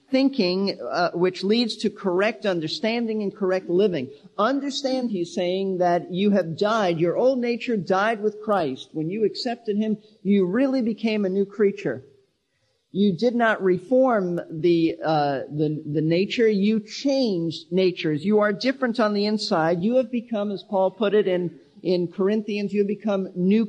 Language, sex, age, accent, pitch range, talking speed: English, male, 50-69, American, 170-225 Hz, 165 wpm